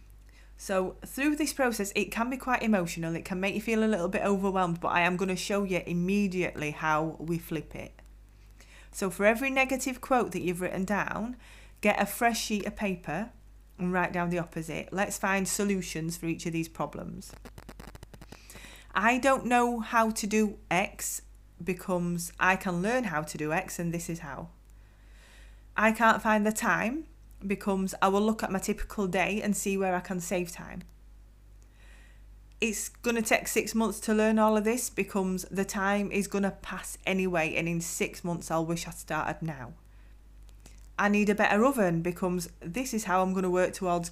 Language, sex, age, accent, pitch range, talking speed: English, female, 30-49, British, 170-210 Hz, 190 wpm